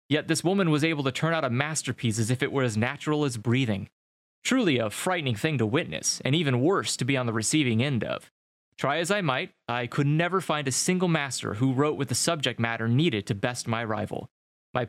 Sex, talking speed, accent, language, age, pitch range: male, 230 wpm, American, English, 20-39, 120-155 Hz